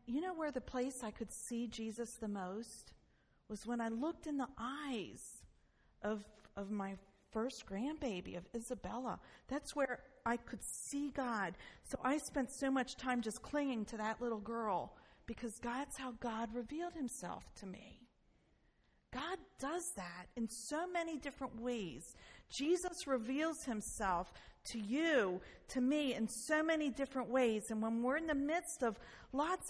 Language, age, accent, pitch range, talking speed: English, 40-59, American, 230-295 Hz, 160 wpm